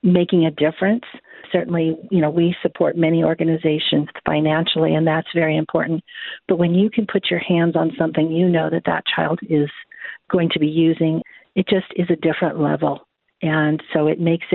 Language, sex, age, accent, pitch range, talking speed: English, female, 50-69, American, 155-180 Hz, 180 wpm